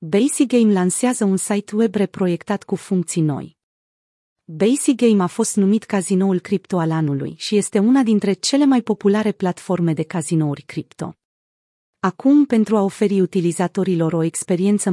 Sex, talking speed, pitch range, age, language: female, 150 wpm, 170-215 Hz, 30-49, Romanian